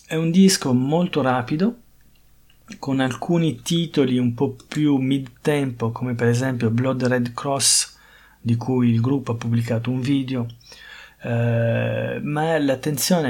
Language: Italian